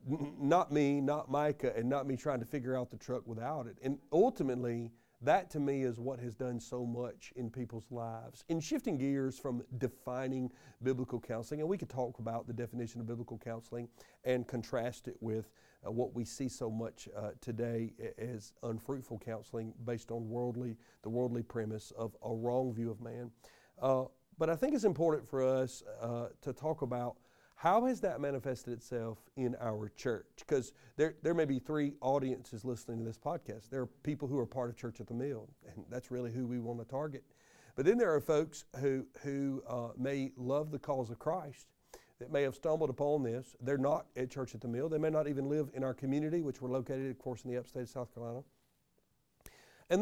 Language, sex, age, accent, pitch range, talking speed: English, male, 50-69, American, 120-140 Hz, 205 wpm